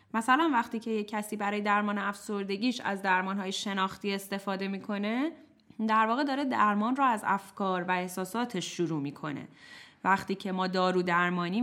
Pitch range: 170-215 Hz